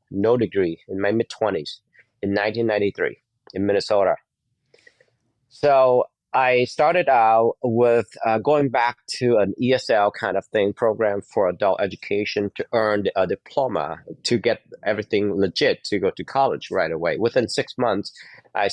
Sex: male